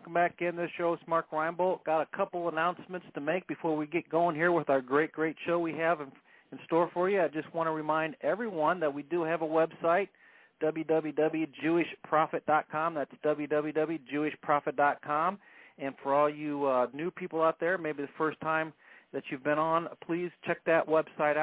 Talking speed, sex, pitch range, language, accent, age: 185 wpm, male, 140-165 Hz, English, American, 40-59